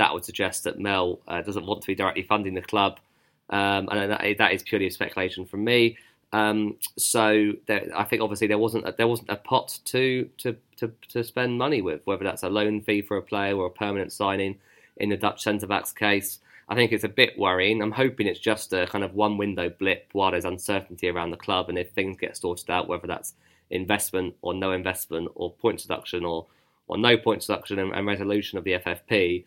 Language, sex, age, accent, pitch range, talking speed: English, male, 20-39, British, 90-105 Hz, 220 wpm